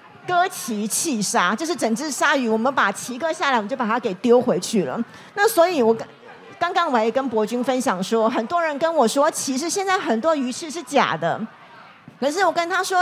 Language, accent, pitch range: Chinese, American, 225-320 Hz